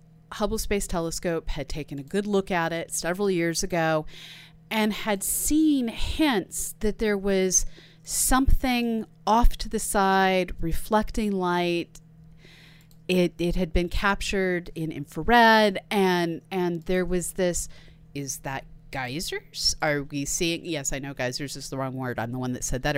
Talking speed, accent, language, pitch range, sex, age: 155 wpm, American, English, 160-215 Hz, female, 30-49